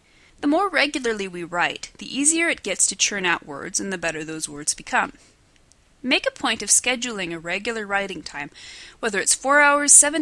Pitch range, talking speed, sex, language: 175-285 Hz, 195 wpm, female, English